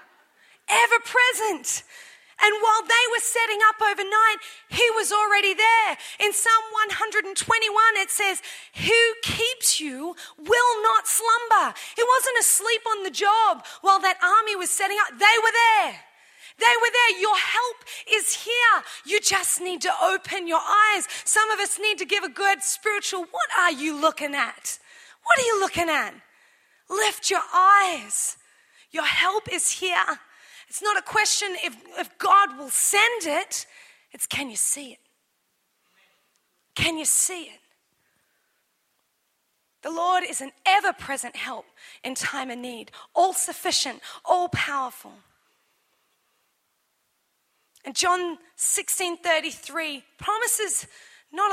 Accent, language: Australian, English